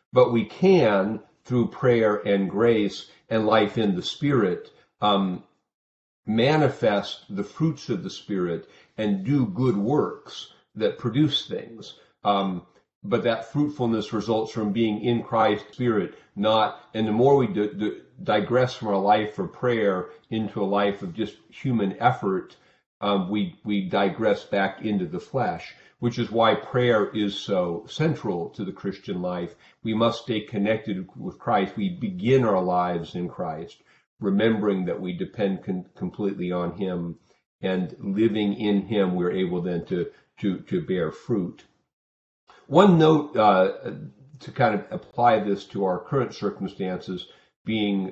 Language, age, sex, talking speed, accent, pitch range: English, 50-69, male, 150 wpm, American, 95-120 Hz